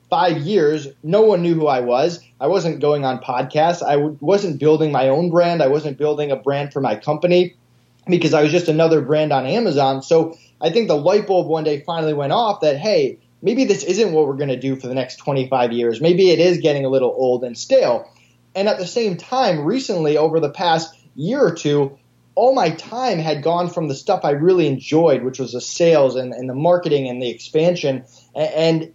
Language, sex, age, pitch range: English, male, 20-39, 135-175 Hz